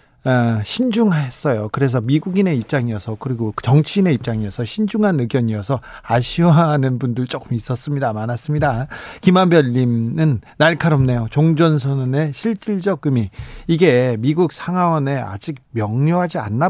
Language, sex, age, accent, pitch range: Korean, male, 40-59, native, 125-165 Hz